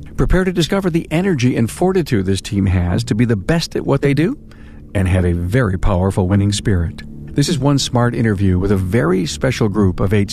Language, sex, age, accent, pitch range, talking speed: English, male, 50-69, American, 95-135 Hz, 215 wpm